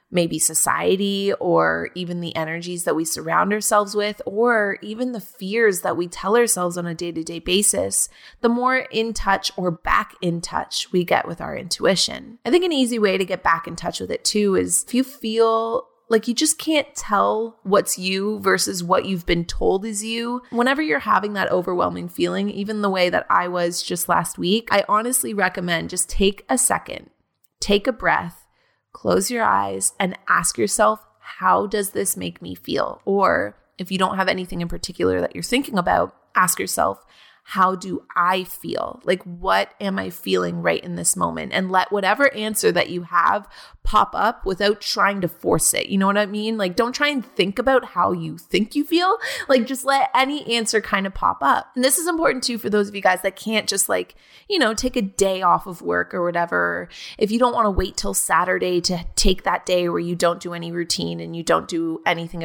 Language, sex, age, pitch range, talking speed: English, female, 20-39, 170-225 Hz, 210 wpm